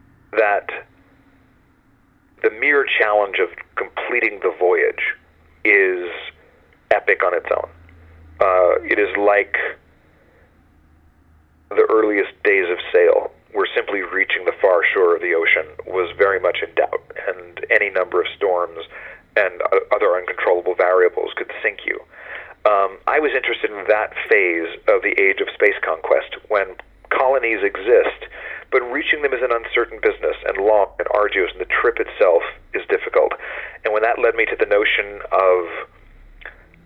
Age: 40-59